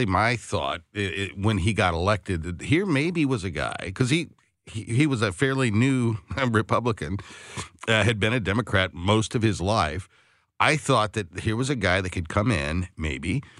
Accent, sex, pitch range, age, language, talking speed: American, male, 95-115 Hz, 60-79, English, 195 wpm